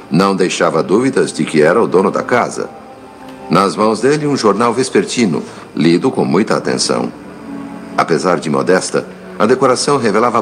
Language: Portuguese